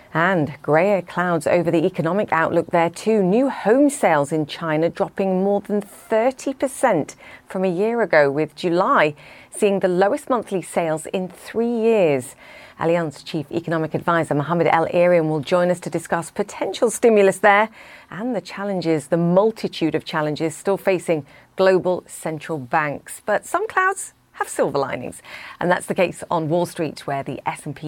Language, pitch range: English, 155-195 Hz